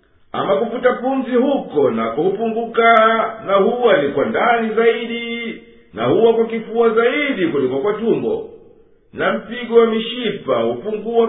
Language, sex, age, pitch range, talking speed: Swahili, male, 50-69, 230-260 Hz, 130 wpm